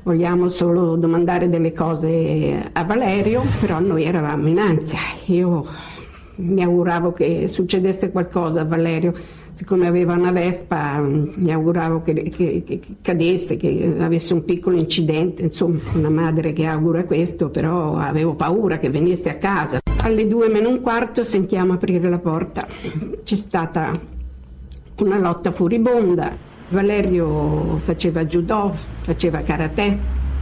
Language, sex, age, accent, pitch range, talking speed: Italian, female, 50-69, native, 160-185 Hz, 130 wpm